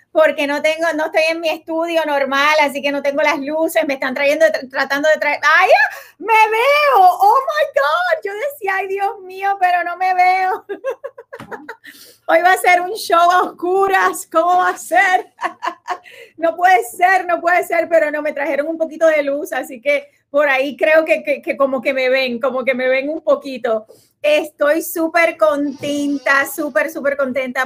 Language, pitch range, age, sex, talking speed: Spanish, 280-340 Hz, 30-49, female, 185 wpm